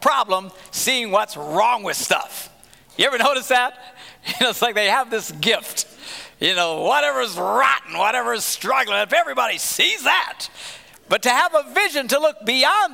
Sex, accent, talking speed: male, American, 170 wpm